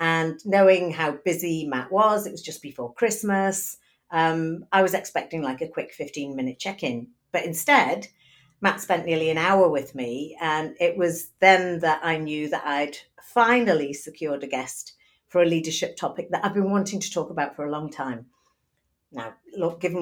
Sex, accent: female, British